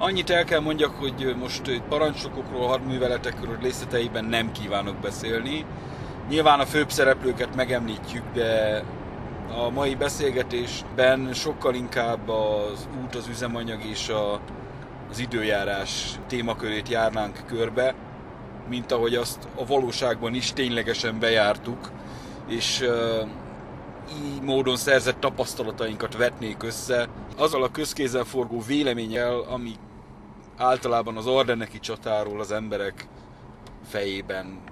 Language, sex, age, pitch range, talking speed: Hungarian, male, 30-49, 110-130 Hz, 105 wpm